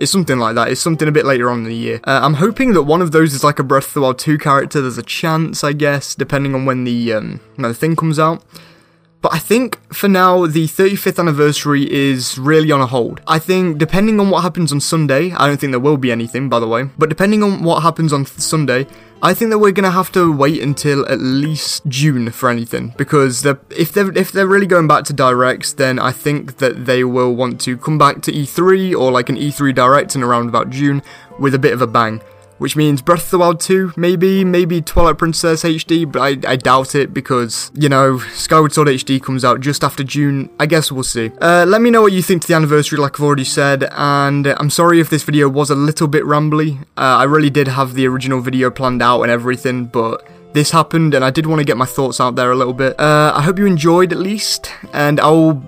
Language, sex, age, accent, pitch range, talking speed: English, male, 20-39, British, 130-165 Hz, 245 wpm